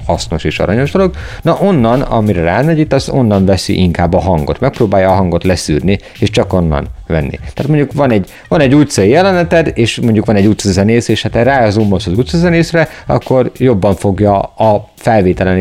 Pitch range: 95-130 Hz